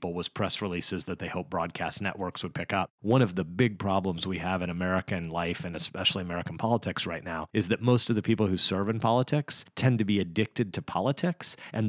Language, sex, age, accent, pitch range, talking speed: English, male, 30-49, American, 90-115 Hz, 220 wpm